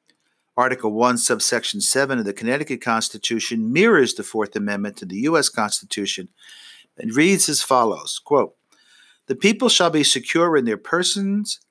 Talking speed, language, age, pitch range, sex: 145 wpm, English, 50-69, 115-155 Hz, male